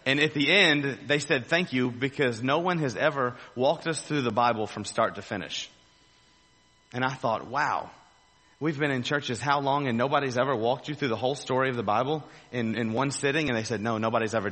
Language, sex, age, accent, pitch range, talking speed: English, male, 30-49, American, 110-140 Hz, 225 wpm